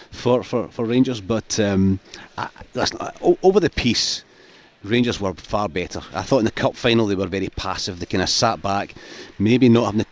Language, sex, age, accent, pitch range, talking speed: English, male, 40-59, British, 100-125 Hz, 215 wpm